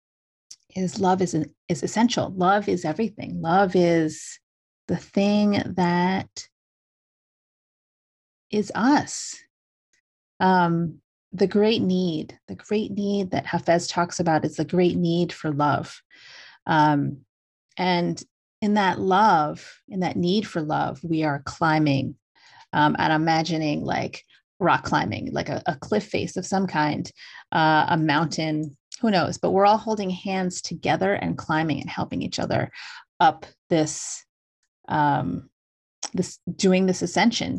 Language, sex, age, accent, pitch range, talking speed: English, female, 30-49, American, 155-190 Hz, 135 wpm